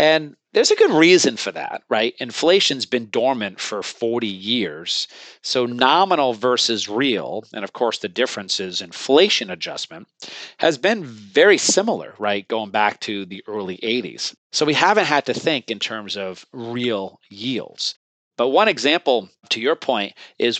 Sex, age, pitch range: male, 40-59, 105-155 Hz